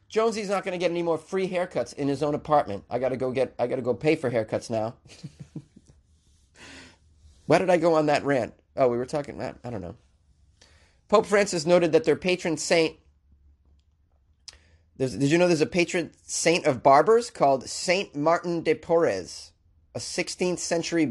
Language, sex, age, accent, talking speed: English, male, 30-49, American, 185 wpm